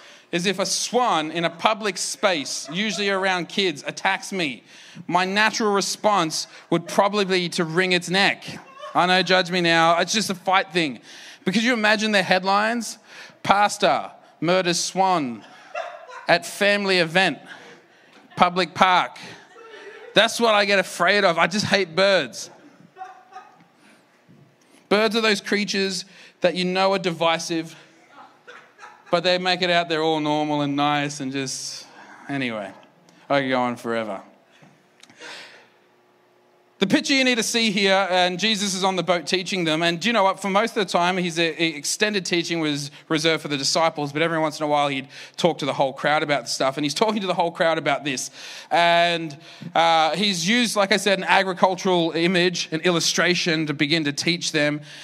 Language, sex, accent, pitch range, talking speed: English, male, Australian, 155-195 Hz, 170 wpm